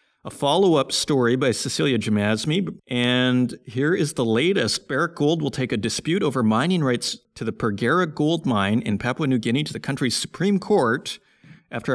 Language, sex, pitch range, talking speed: English, male, 110-160 Hz, 175 wpm